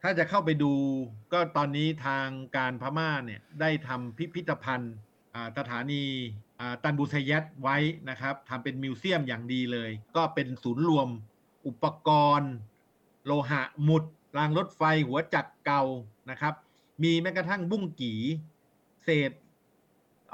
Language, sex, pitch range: Thai, male, 120-150 Hz